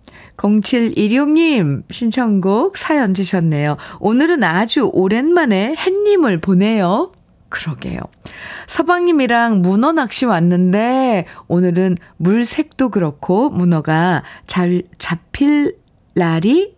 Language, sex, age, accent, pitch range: Korean, female, 50-69, native, 160-220 Hz